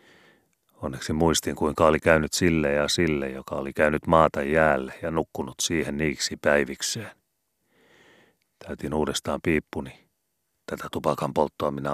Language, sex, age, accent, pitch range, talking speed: Finnish, male, 30-49, native, 75-90 Hz, 125 wpm